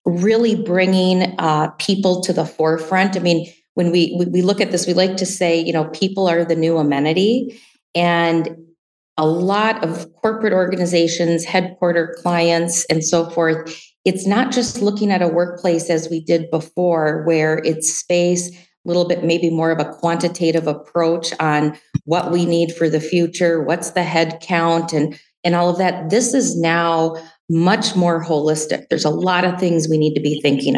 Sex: female